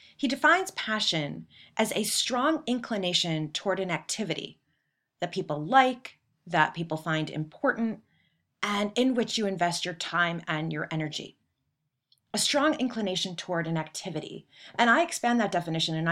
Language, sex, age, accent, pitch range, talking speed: English, female, 30-49, American, 170-240 Hz, 145 wpm